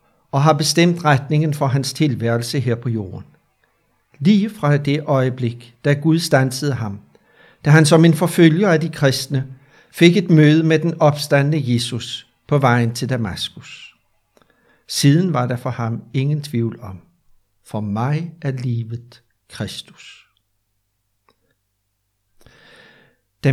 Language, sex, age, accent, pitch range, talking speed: Danish, male, 60-79, native, 120-160 Hz, 130 wpm